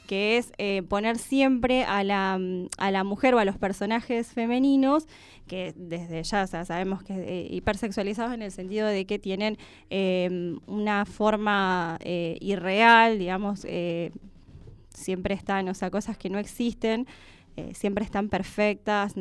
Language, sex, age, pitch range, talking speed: Spanish, female, 10-29, 180-225 Hz, 145 wpm